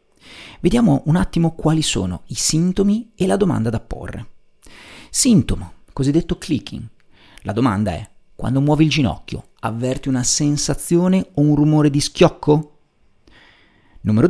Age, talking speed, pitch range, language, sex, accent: 40-59, 130 wpm, 115-155 Hz, Italian, male, native